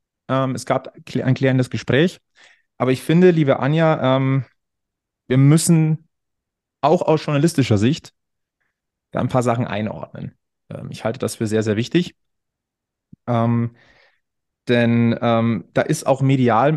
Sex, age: male, 30-49